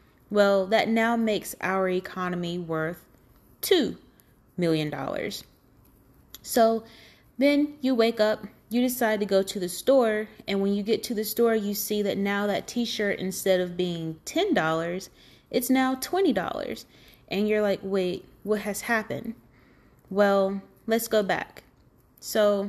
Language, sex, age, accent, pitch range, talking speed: English, female, 20-39, American, 185-230 Hz, 140 wpm